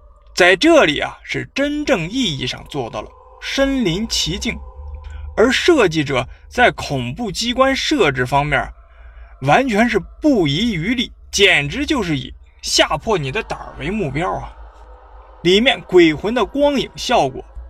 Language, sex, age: Chinese, male, 20-39